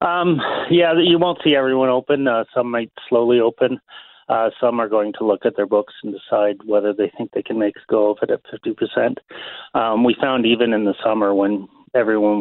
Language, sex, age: English, male, 30-49